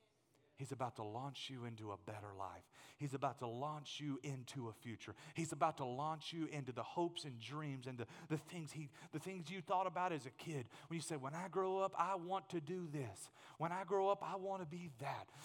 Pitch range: 125-170 Hz